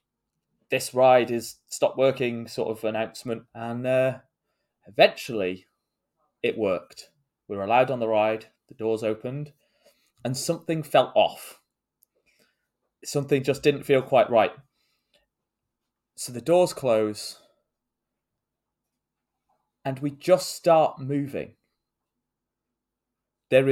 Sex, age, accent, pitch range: male, 20-39, British, 110-145 Hz